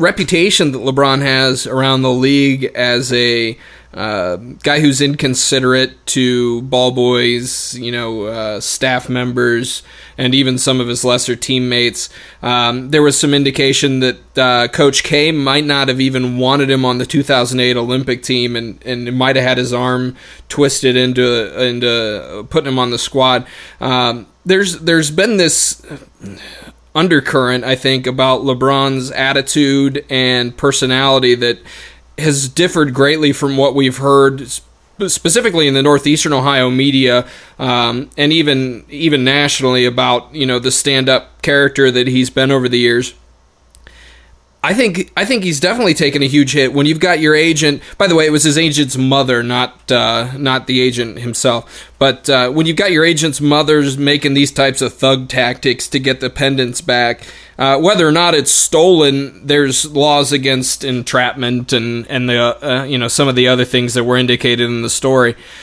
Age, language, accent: 20-39, English, American